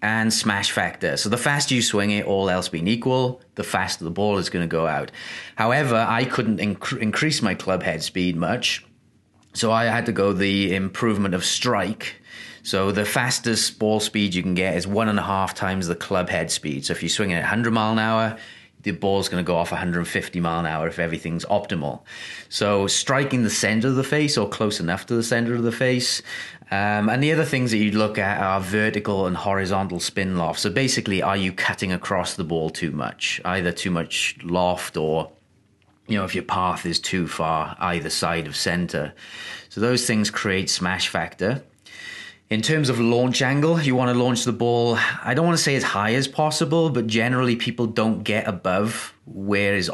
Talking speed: 205 wpm